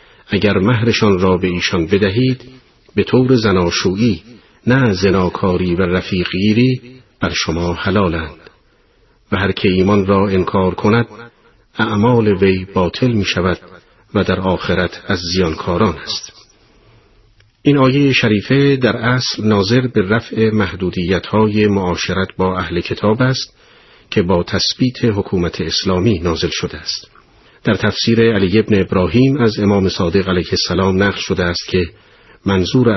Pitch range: 90-115 Hz